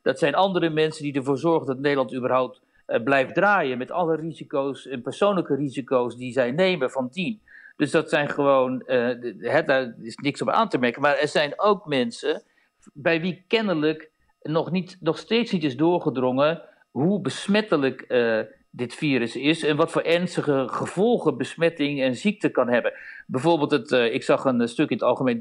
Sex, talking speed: male, 185 wpm